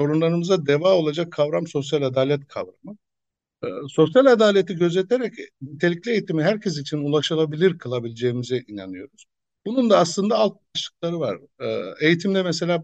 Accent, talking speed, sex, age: native, 125 wpm, male, 60-79